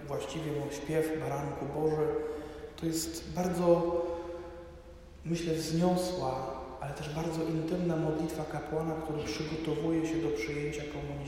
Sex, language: male, Polish